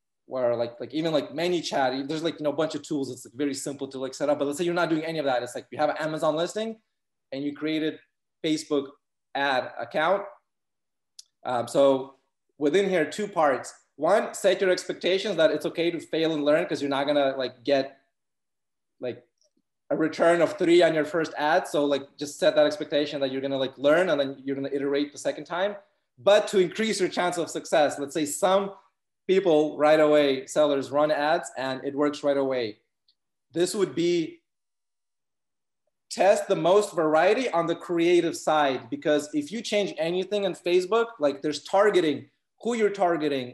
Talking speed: 195 wpm